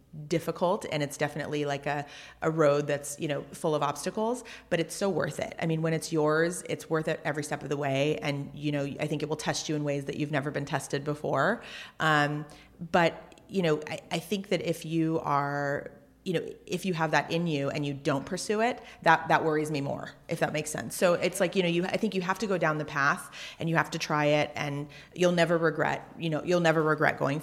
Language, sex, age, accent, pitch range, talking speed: English, female, 30-49, American, 145-170 Hz, 245 wpm